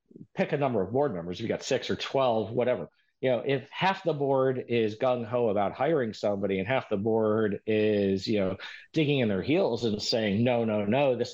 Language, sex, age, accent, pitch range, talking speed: English, male, 40-59, American, 110-150 Hz, 210 wpm